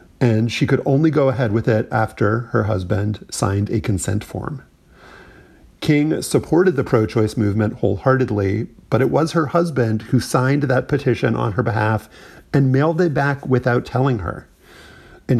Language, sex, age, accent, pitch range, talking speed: English, male, 40-59, American, 105-135 Hz, 160 wpm